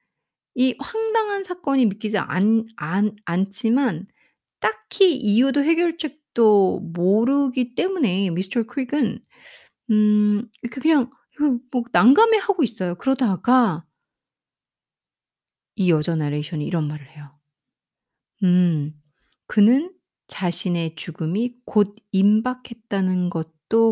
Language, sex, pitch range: Korean, female, 170-245 Hz